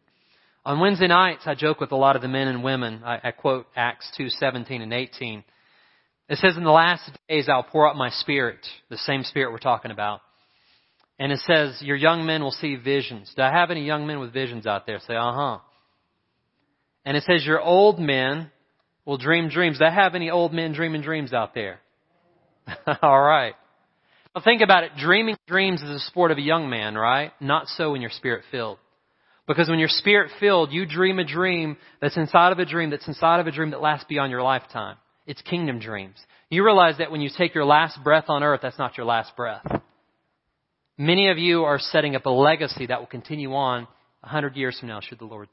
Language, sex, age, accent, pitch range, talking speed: English, male, 30-49, American, 125-165 Hz, 210 wpm